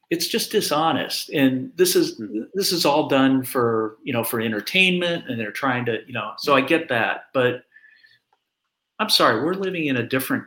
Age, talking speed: 40-59, 190 wpm